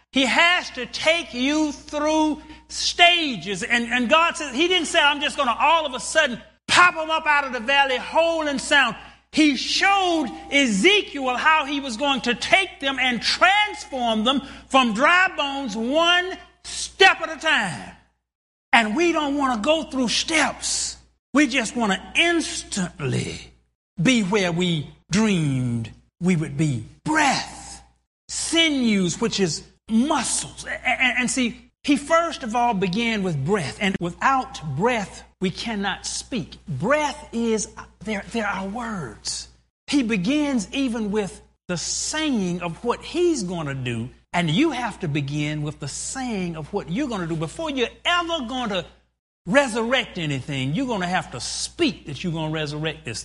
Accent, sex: American, male